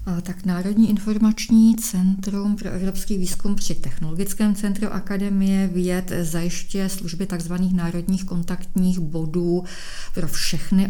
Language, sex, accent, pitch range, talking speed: Czech, female, native, 150-175 Hz, 110 wpm